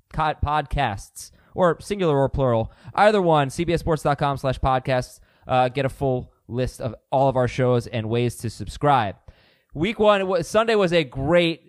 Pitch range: 120-180 Hz